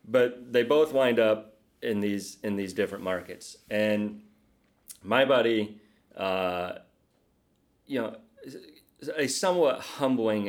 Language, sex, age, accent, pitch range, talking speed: English, male, 30-49, American, 90-110 Hz, 115 wpm